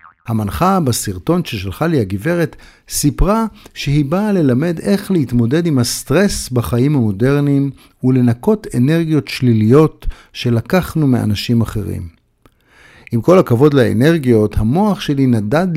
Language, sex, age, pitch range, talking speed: Hebrew, male, 50-69, 115-170 Hz, 105 wpm